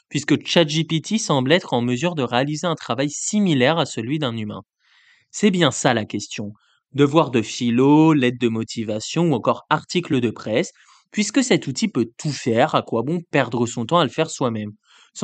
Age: 20-39